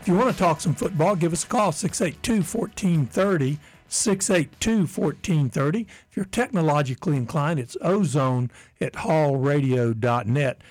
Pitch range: 125-175 Hz